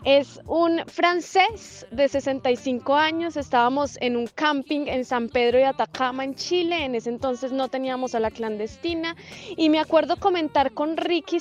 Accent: Colombian